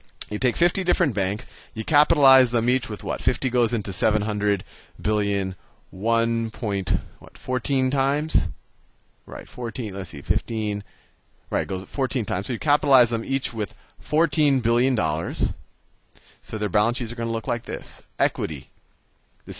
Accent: American